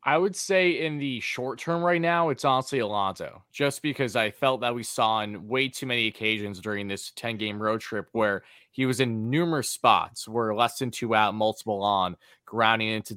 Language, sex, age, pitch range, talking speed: English, male, 20-39, 110-140 Hz, 205 wpm